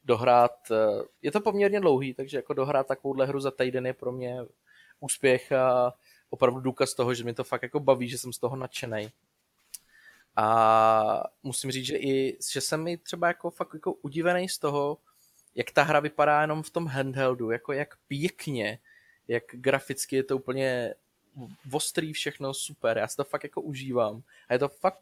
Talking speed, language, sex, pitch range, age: 180 wpm, Czech, male, 125-150 Hz, 20-39